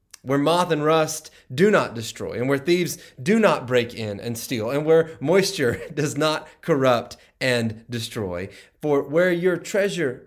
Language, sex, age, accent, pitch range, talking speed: English, male, 30-49, American, 120-165 Hz, 165 wpm